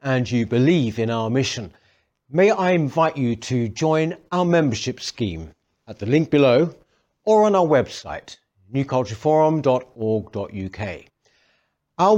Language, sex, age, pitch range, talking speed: English, male, 60-79, 115-155 Hz, 125 wpm